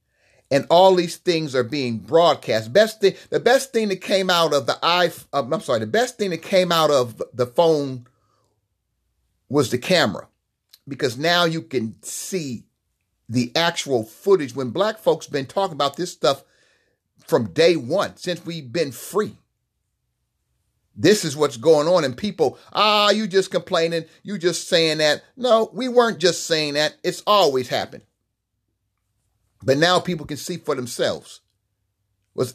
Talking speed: 160 wpm